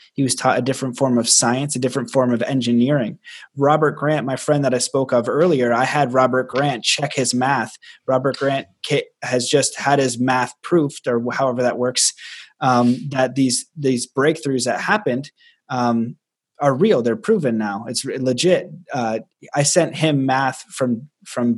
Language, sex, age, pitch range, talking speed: English, male, 20-39, 125-145 Hz, 175 wpm